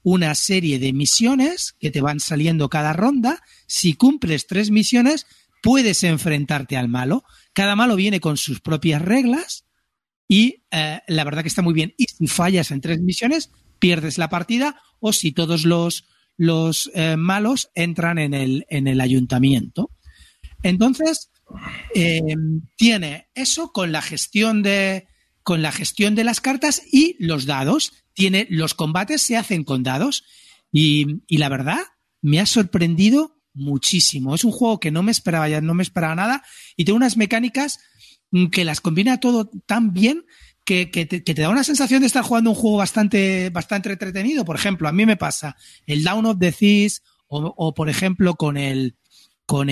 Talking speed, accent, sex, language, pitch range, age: 170 wpm, Spanish, male, Spanish, 155-225 Hz, 40-59